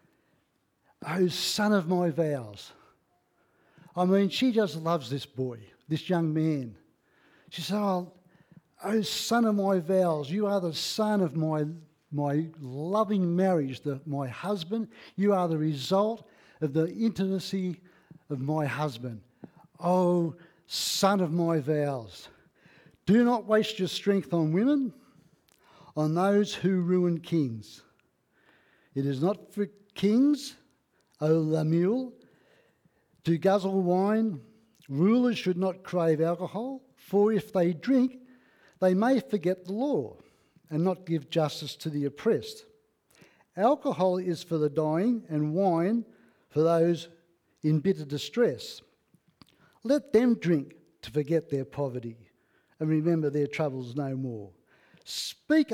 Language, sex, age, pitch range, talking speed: English, male, 60-79, 155-205 Hz, 125 wpm